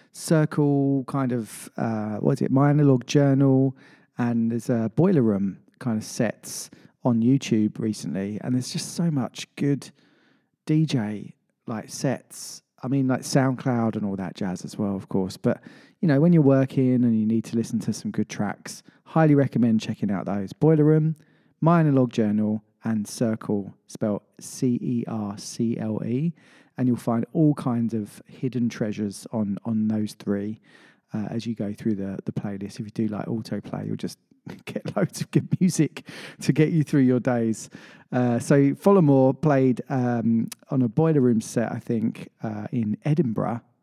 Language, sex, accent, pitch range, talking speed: English, male, British, 110-155 Hz, 170 wpm